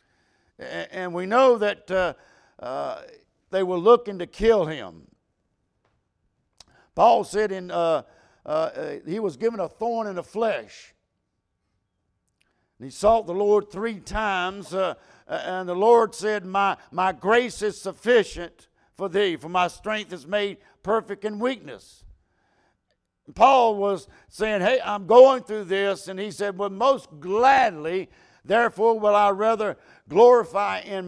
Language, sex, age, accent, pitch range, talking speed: English, male, 60-79, American, 180-230 Hz, 140 wpm